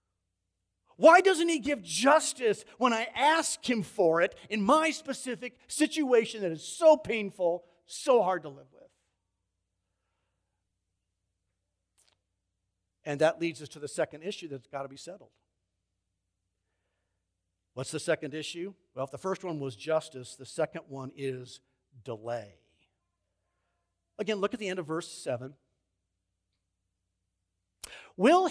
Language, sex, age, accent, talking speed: English, male, 50-69, American, 130 wpm